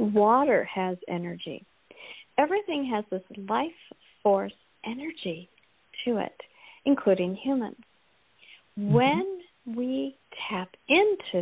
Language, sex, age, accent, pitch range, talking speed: English, female, 50-69, American, 190-275 Hz, 90 wpm